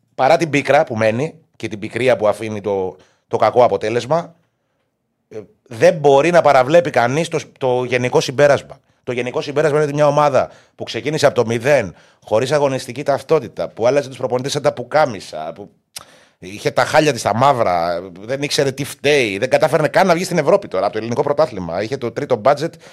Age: 30-49